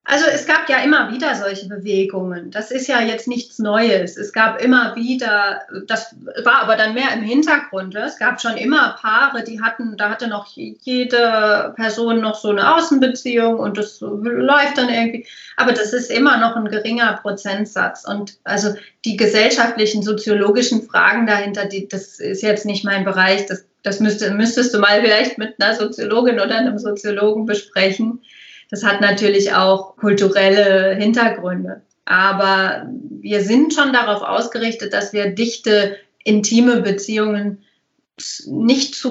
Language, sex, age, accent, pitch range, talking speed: German, female, 30-49, German, 205-240 Hz, 155 wpm